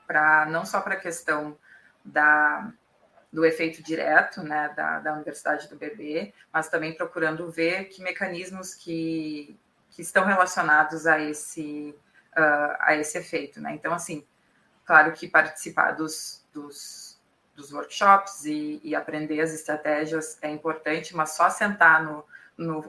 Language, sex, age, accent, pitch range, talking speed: Portuguese, female, 20-39, Brazilian, 150-175 Hz, 140 wpm